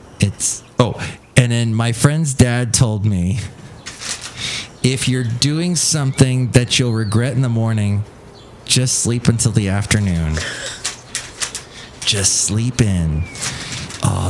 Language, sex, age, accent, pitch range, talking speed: English, male, 30-49, American, 105-130 Hz, 120 wpm